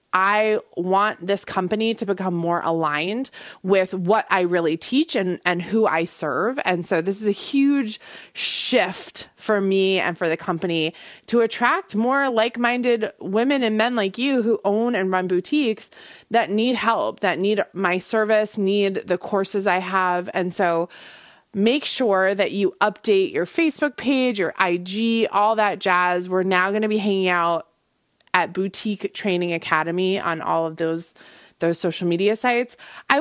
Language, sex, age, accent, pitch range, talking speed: English, female, 20-39, American, 180-225 Hz, 165 wpm